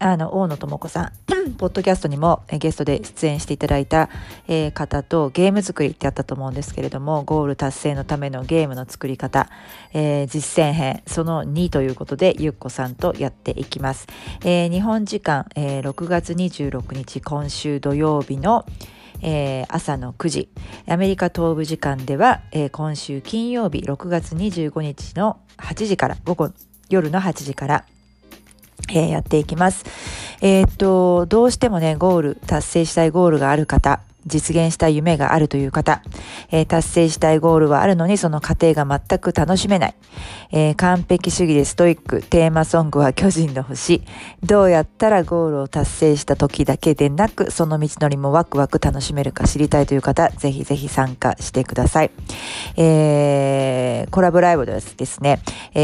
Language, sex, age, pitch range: Japanese, female, 40-59, 140-170 Hz